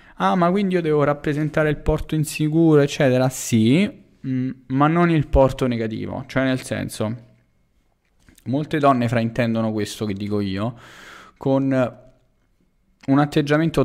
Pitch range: 110-135 Hz